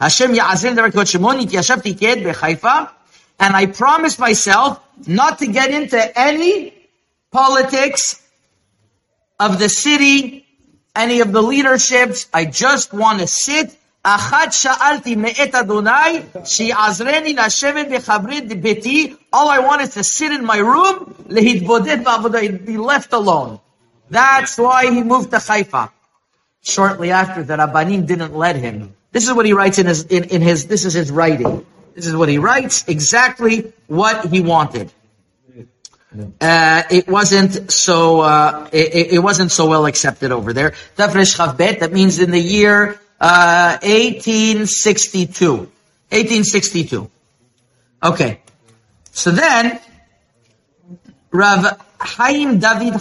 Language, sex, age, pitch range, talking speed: English, male, 50-69, 165-245 Hz, 110 wpm